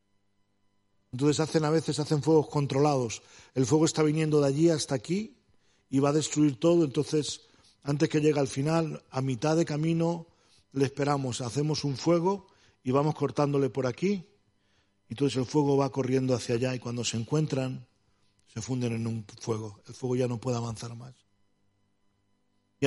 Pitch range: 105-140 Hz